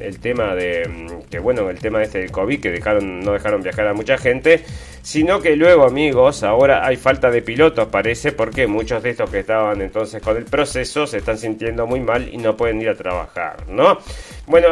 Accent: Argentinian